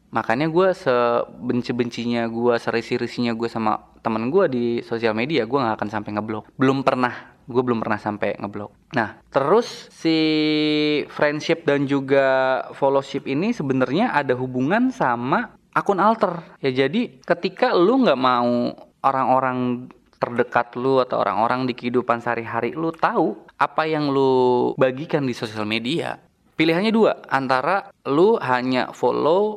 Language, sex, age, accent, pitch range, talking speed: Indonesian, male, 20-39, native, 120-150 Hz, 140 wpm